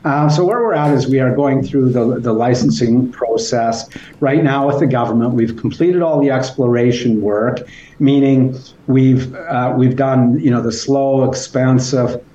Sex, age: male, 50-69